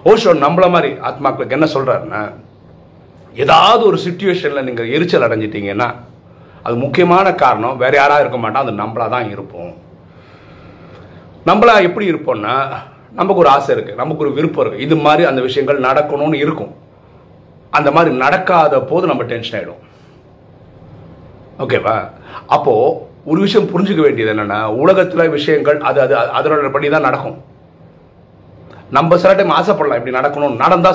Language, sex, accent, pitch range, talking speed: Tamil, male, native, 115-165 Hz, 120 wpm